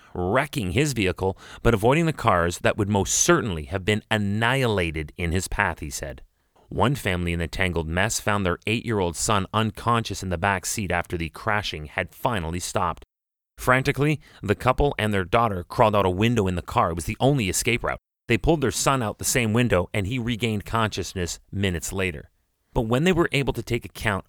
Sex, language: male, English